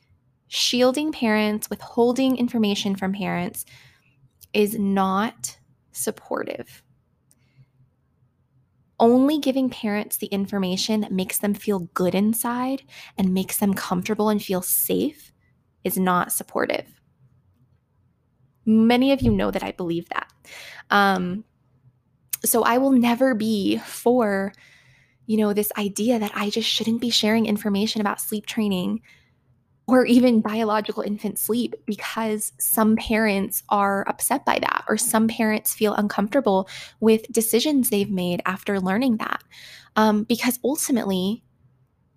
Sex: female